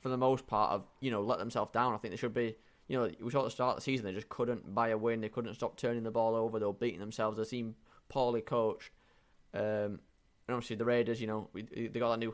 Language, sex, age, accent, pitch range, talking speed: English, male, 10-29, British, 110-125 Hz, 270 wpm